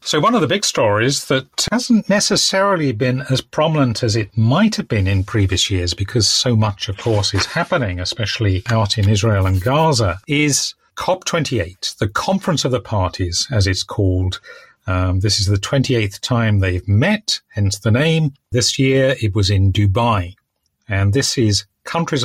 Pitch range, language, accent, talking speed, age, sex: 100-130 Hz, English, British, 175 wpm, 40-59, male